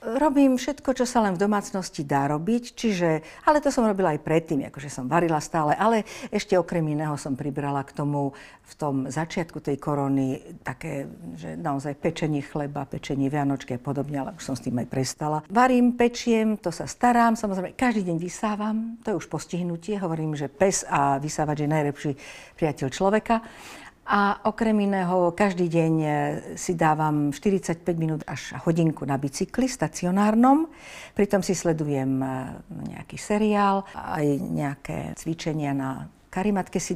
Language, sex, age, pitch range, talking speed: Slovak, female, 50-69, 150-195 Hz, 155 wpm